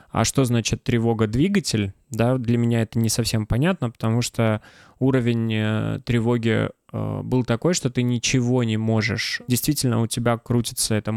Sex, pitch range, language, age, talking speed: male, 110-125 Hz, Russian, 20-39, 145 wpm